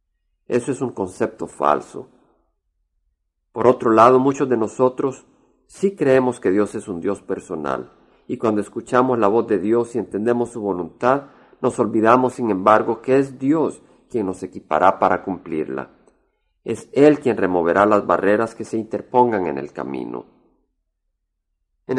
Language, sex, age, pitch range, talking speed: Spanish, male, 50-69, 100-130 Hz, 150 wpm